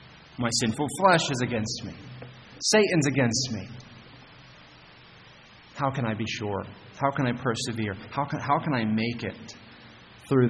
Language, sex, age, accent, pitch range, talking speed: English, male, 40-59, American, 110-140 Hz, 145 wpm